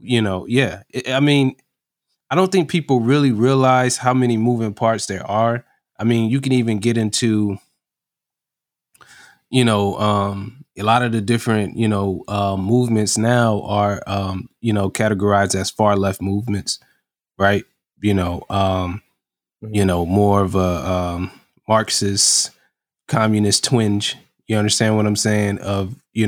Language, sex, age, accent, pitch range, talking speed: English, male, 20-39, American, 100-120 Hz, 150 wpm